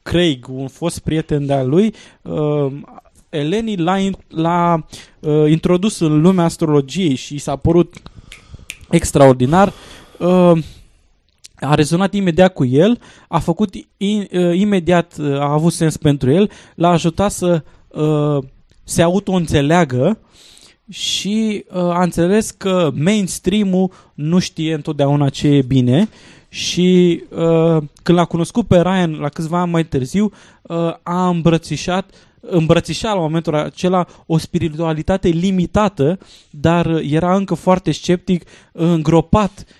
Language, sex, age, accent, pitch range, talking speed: Romanian, male, 20-39, native, 140-180 Hz, 130 wpm